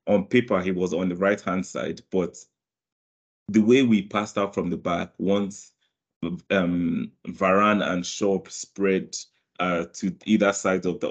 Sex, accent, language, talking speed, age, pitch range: male, Nigerian, English, 155 wpm, 30-49, 90-105 Hz